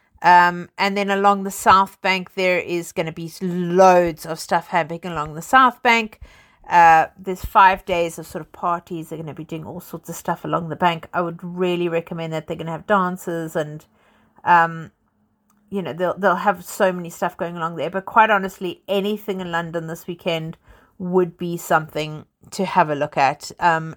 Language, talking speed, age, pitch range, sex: English, 200 wpm, 50-69, 170-200 Hz, female